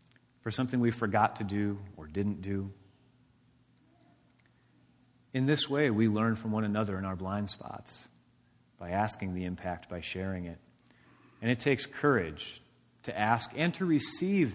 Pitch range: 95-125 Hz